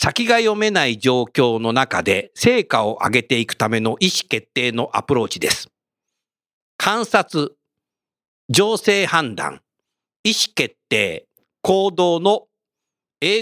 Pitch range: 130-195 Hz